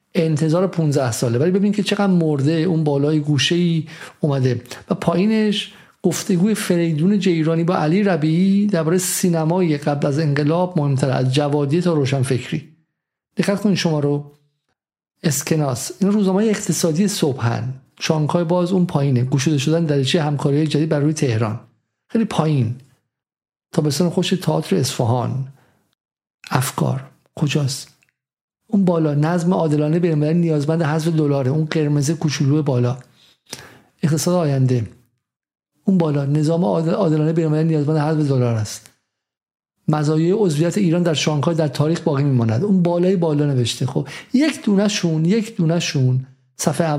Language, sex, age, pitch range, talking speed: Persian, male, 50-69, 140-175 Hz, 135 wpm